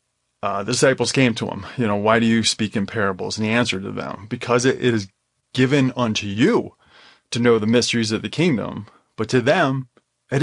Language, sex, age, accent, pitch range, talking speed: English, male, 30-49, American, 115-150 Hz, 205 wpm